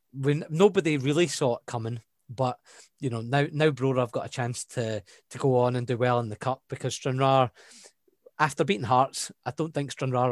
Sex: male